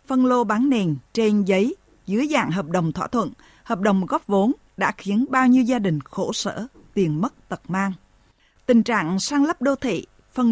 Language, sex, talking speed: Vietnamese, female, 200 wpm